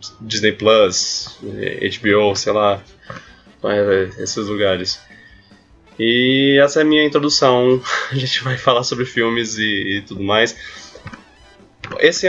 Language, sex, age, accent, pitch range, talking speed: Portuguese, male, 10-29, Brazilian, 105-135 Hz, 115 wpm